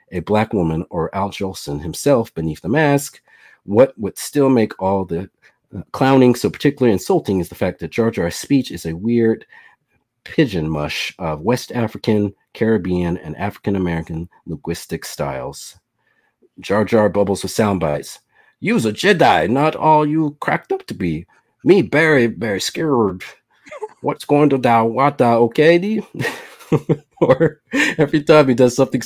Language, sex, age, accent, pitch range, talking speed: English, male, 40-59, American, 95-140 Hz, 155 wpm